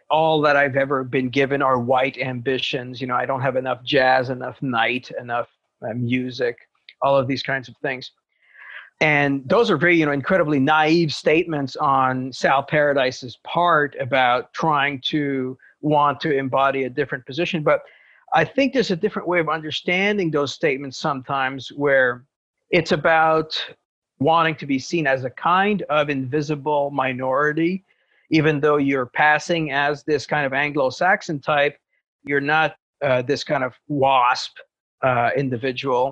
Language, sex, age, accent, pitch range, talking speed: English, male, 50-69, American, 130-155 Hz, 155 wpm